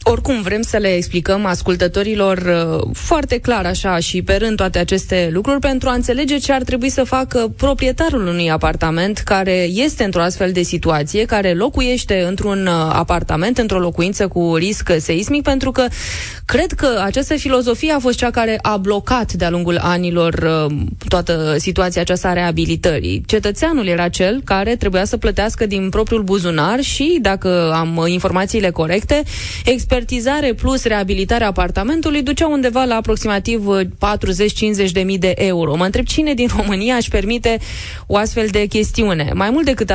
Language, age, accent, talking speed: Romanian, 20-39, native, 160 wpm